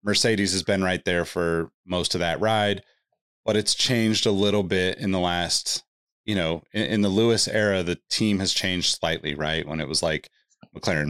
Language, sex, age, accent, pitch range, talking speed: English, male, 30-49, American, 90-115 Hz, 200 wpm